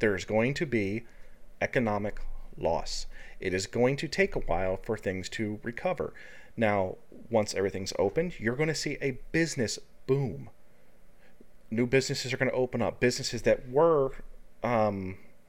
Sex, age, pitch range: male, 30-49, 100-125 Hz